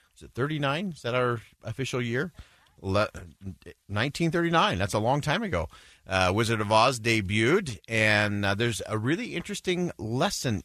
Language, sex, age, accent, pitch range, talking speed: English, male, 40-59, American, 95-140 Hz, 145 wpm